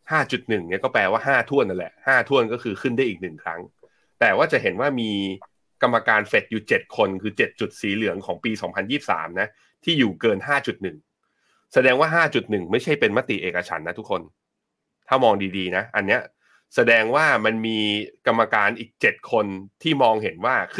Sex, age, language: male, 30-49, Thai